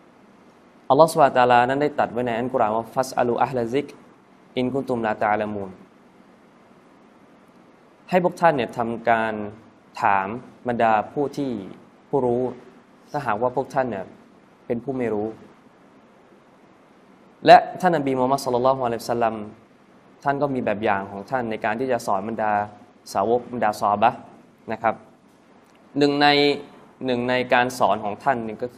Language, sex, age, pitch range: Thai, male, 20-39, 110-135 Hz